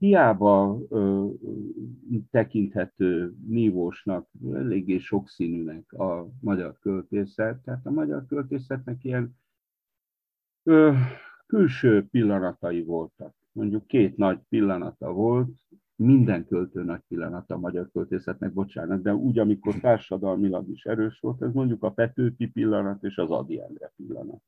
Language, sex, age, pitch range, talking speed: Hungarian, male, 60-79, 95-125 Hz, 115 wpm